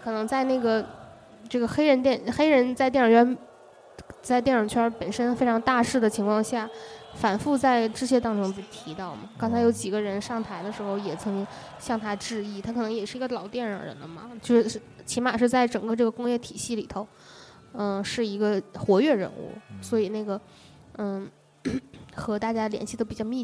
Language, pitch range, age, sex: Chinese, 205-245 Hz, 10-29, female